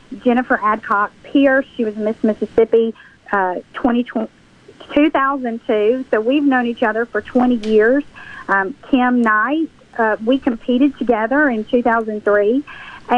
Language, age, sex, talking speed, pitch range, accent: English, 40-59, female, 120 wpm, 225-265 Hz, American